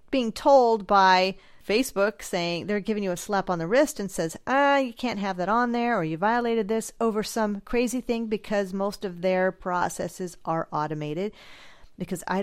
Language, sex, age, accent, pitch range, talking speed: English, female, 40-59, American, 175-230 Hz, 190 wpm